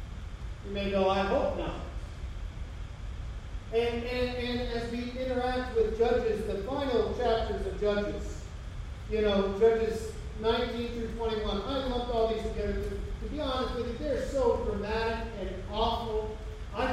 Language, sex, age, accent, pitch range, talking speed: English, male, 40-59, American, 205-270 Hz, 145 wpm